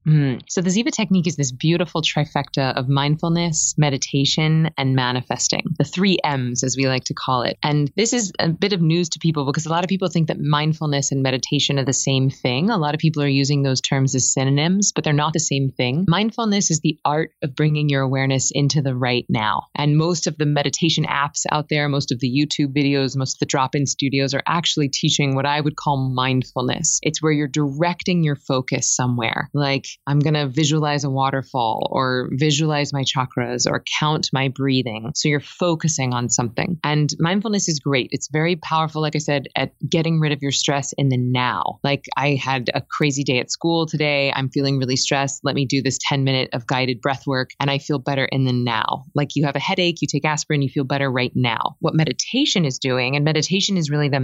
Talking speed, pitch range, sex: 220 wpm, 135-155 Hz, female